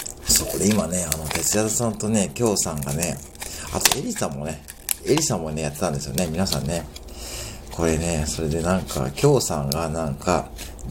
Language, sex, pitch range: Japanese, male, 75-105 Hz